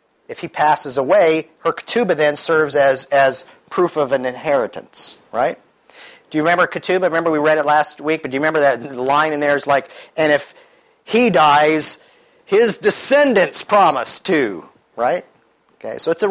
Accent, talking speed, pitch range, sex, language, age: American, 175 wpm, 135-175 Hz, male, English, 40-59